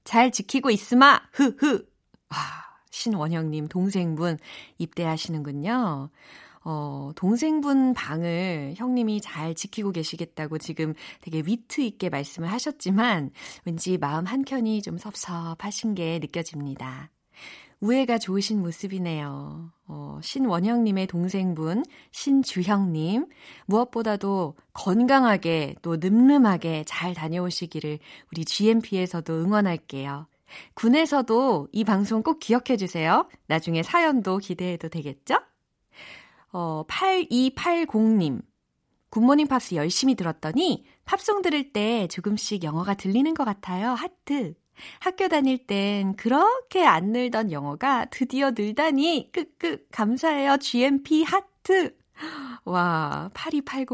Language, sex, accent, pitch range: Korean, female, native, 165-255 Hz